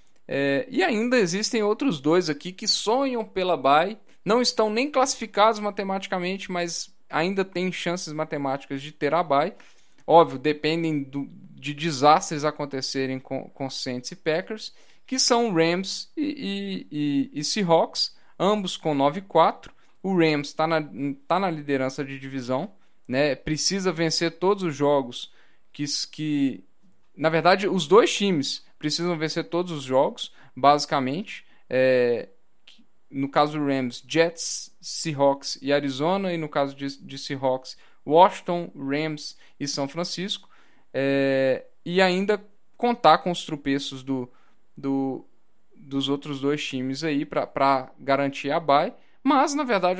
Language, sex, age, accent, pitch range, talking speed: Portuguese, male, 10-29, Brazilian, 140-180 Hz, 140 wpm